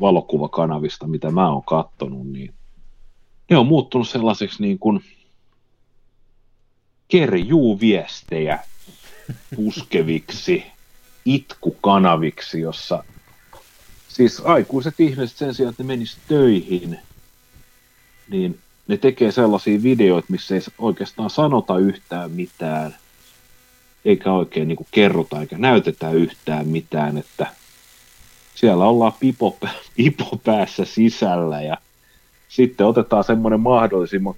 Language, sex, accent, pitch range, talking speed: Finnish, male, native, 90-125 Hz, 95 wpm